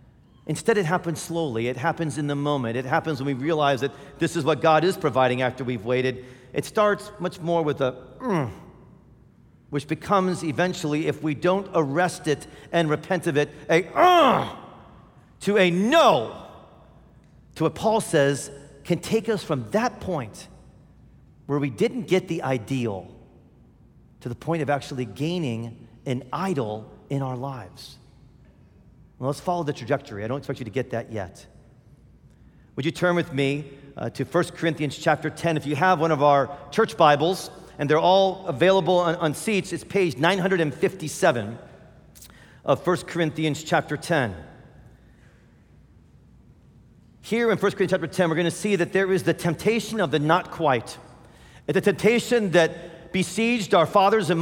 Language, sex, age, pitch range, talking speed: English, male, 40-59, 140-185 Hz, 160 wpm